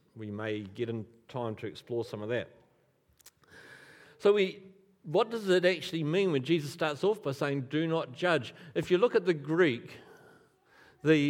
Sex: male